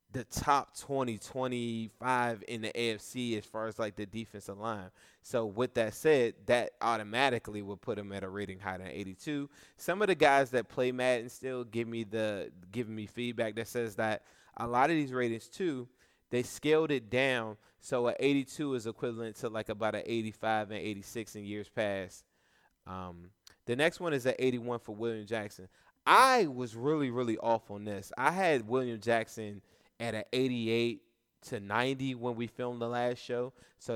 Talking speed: 185 wpm